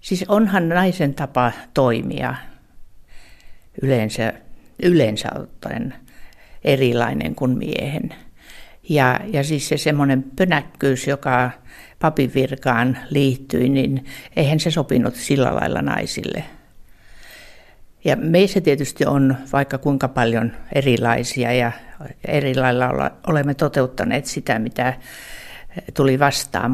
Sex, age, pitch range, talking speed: female, 60-79, 125-150 Hz, 95 wpm